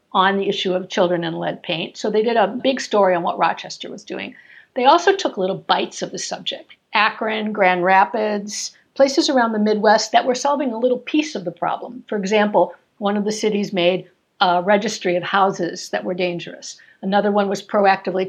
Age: 60-79